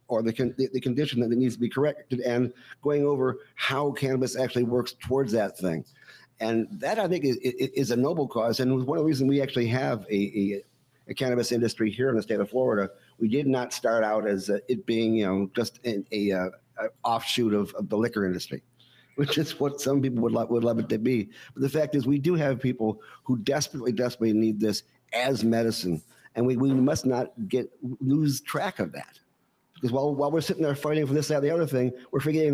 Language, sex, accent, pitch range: English, male, American, 115-140 Hz